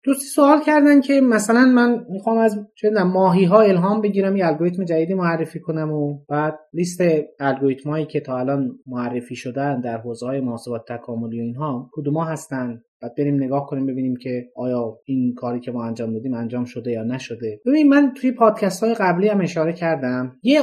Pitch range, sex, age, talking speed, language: 135-200 Hz, male, 30-49, 180 wpm, Persian